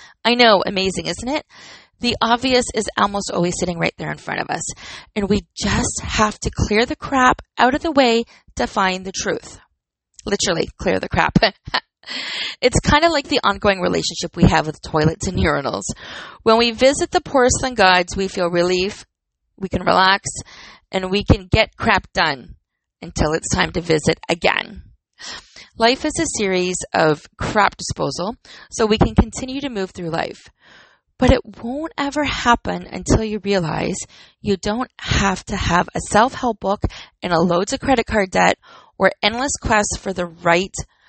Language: English